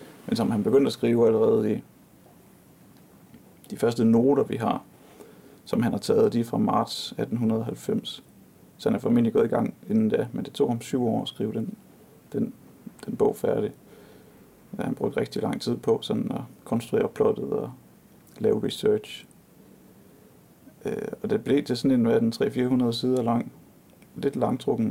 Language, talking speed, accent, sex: Danish, 170 wpm, native, male